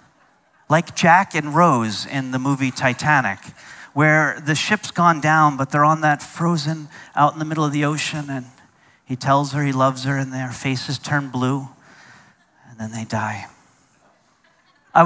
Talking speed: 165 wpm